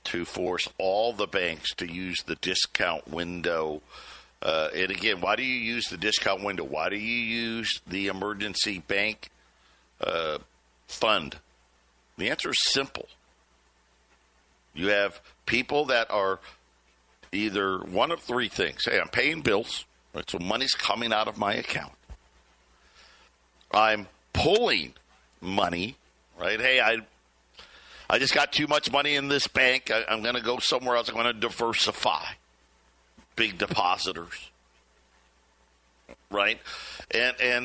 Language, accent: English, American